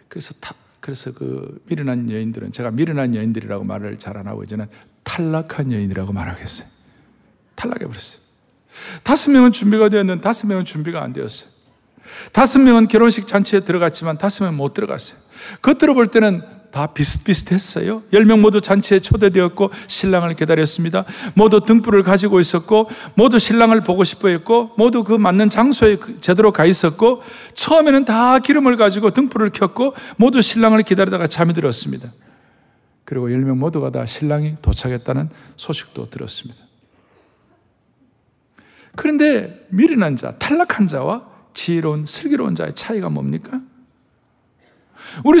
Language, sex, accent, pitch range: Korean, male, native, 150-240 Hz